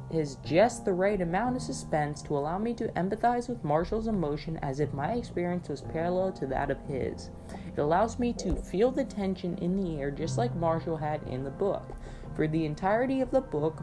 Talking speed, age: 210 wpm, 20-39